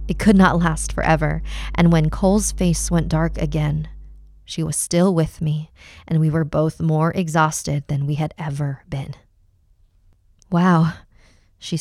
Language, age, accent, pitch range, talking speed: English, 20-39, American, 100-170 Hz, 150 wpm